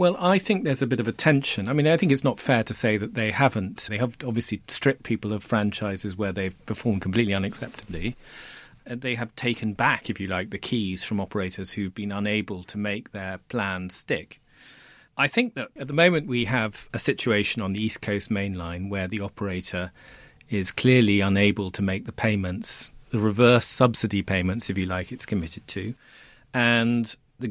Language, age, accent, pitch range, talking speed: English, 40-59, British, 100-130 Hz, 200 wpm